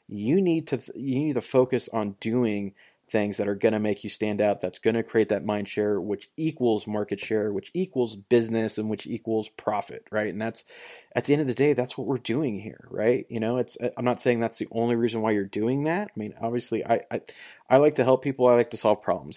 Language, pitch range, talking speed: English, 110-135 Hz, 250 wpm